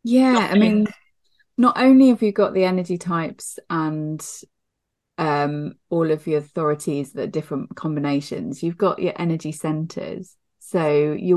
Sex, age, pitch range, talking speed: female, 30-49, 155-195 Hz, 140 wpm